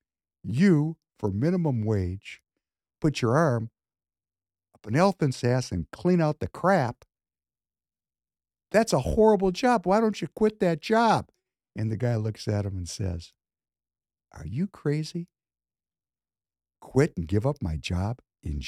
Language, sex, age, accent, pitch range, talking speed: English, male, 60-79, American, 100-150 Hz, 140 wpm